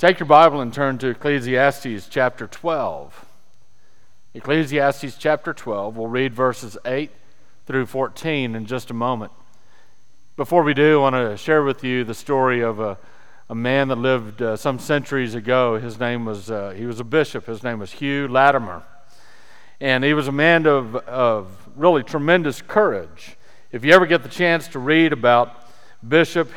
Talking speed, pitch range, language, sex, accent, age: 170 wpm, 120-150 Hz, English, male, American, 40-59